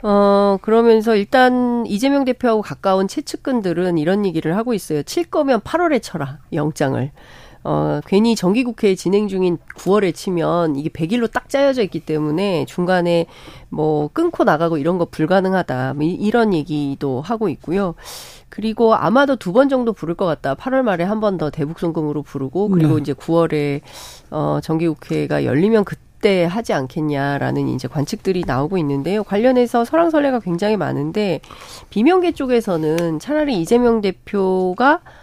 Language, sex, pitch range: Korean, female, 155-220 Hz